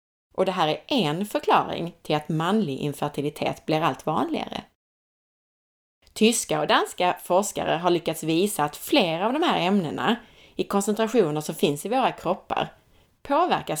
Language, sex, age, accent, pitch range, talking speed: Swedish, female, 30-49, native, 155-220 Hz, 150 wpm